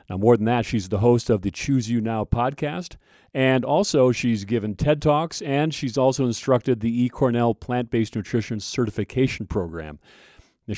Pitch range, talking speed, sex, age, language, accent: 100-130 Hz, 165 wpm, male, 40-59, English, American